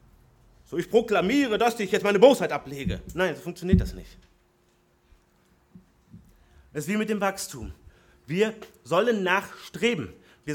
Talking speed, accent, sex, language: 135 wpm, German, male, German